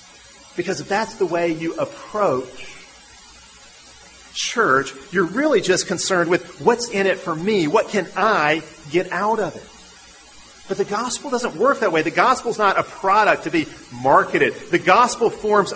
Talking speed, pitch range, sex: 165 wpm, 175-220 Hz, male